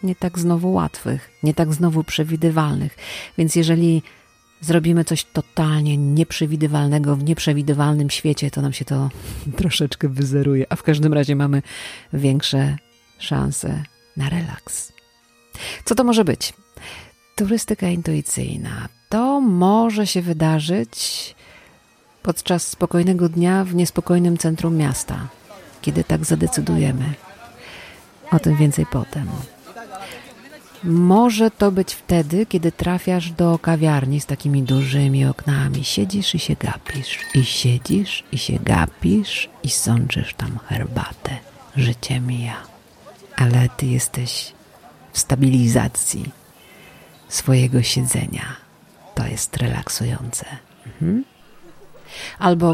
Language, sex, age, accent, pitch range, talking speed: Polish, female, 40-59, native, 135-170 Hz, 105 wpm